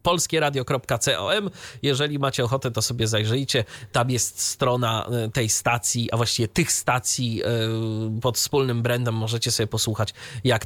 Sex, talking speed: male, 135 wpm